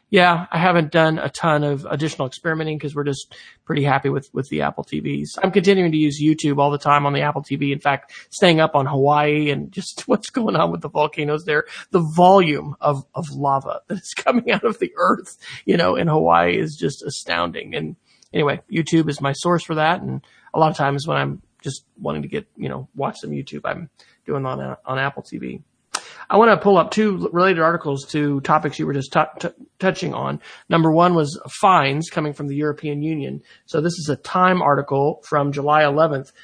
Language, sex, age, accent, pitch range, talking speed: English, male, 30-49, American, 140-170 Hz, 215 wpm